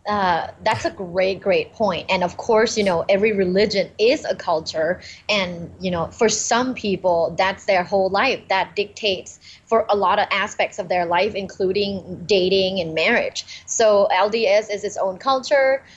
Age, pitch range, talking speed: 20-39, 185-225 Hz, 175 wpm